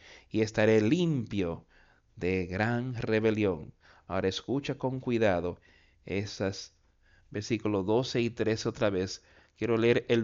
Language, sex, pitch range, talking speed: Spanish, male, 110-175 Hz, 115 wpm